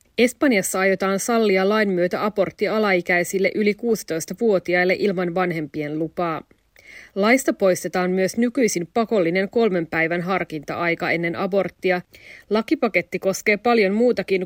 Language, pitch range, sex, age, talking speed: Finnish, 175-210 Hz, female, 30-49, 110 wpm